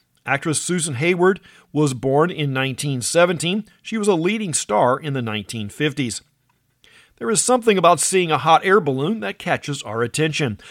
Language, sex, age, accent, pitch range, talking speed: English, male, 40-59, American, 130-175 Hz, 155 wpm